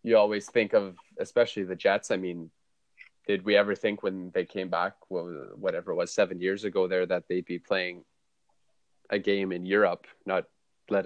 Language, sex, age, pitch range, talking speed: English, male, 20-39, 90-105 Hz, 185 wpm